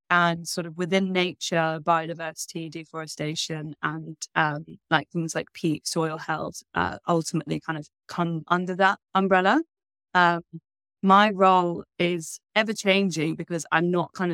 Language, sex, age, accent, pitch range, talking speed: English, female, 20-39, British, 160-180 Hz, 140 wpm